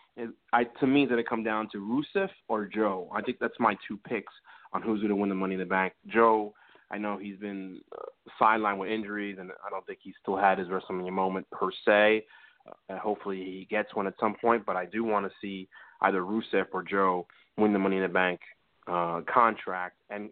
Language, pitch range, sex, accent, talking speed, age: English, 95-115 Hz, male, American, 225 wpm, 30-49